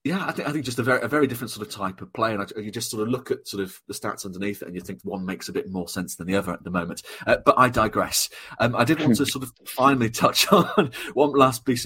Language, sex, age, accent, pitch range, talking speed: English, male, 30-49, British, 105-125 Hz, 315 wpm